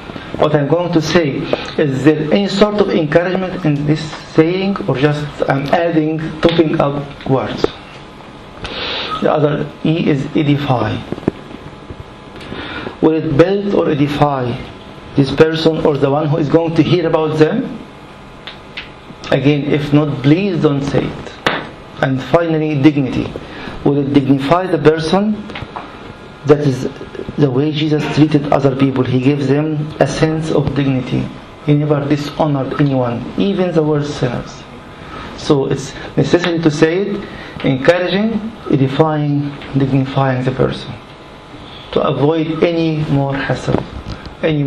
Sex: male